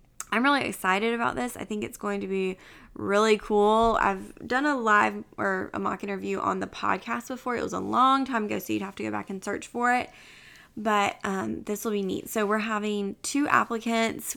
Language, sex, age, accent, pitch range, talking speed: English, female, 20-39, American, 190-235 Hz, 215 wpm